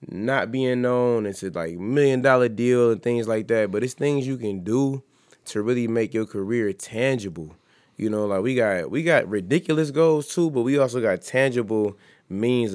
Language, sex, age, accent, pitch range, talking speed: English, male, 20-39, American, 95-120 Hz, 195 wpm